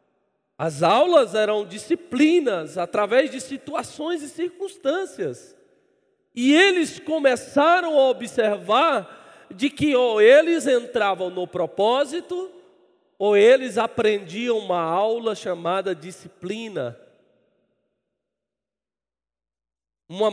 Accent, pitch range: Brazilian, 205-305 Hz